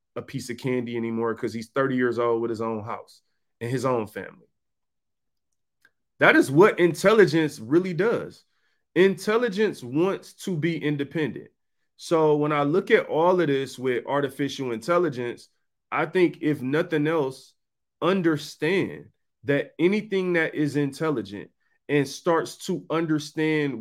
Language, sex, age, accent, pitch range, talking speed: English, male, 30-49, American, 130-170 Hz, 140 wpm